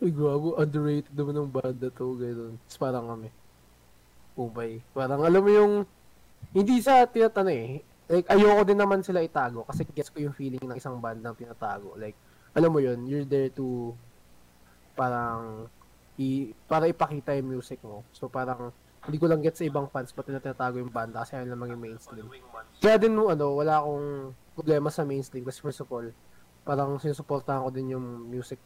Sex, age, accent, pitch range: male, 20-39, native, 120-155 Hz